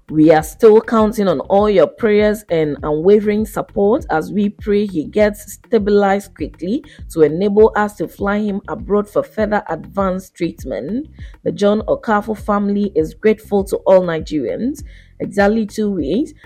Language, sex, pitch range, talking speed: English, female, 175-215 Hz, 150 wpm